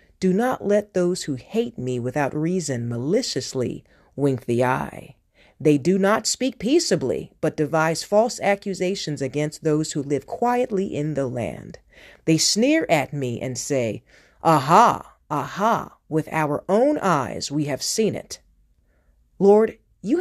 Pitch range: 140-200 Hz